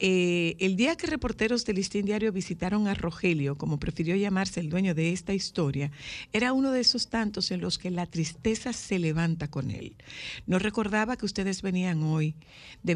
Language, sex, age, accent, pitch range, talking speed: Spanish, female, 50-69, American, 165-210 Hz, 185 wpm